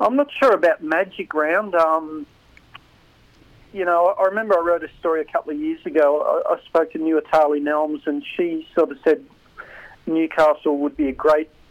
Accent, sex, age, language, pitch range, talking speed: Australian, male, 40-59, English, 145-160 Hz, 190 wpm